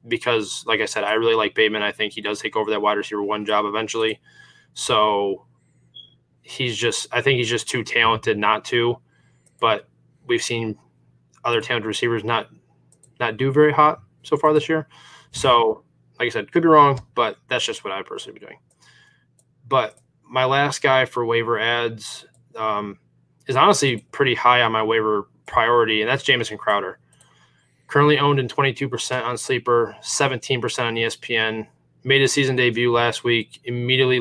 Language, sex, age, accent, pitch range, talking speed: English, male, 20-39, American, 115-130 Hz, 170 wpm